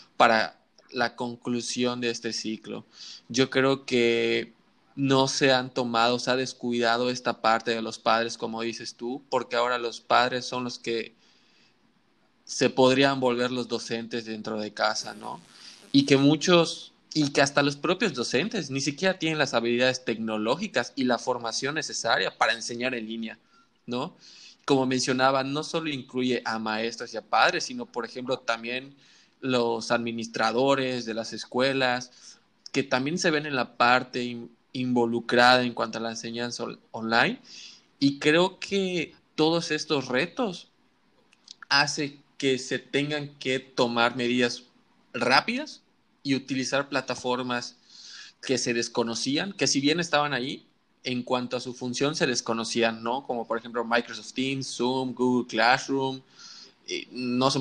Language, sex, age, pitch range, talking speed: Spanish, male, 20-39, 120-140 Hz, 150 wpm